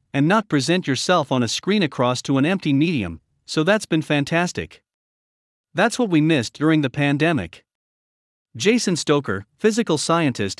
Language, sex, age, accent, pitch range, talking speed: English, male, 50-69, American, 130-180 Hz, 155 wpm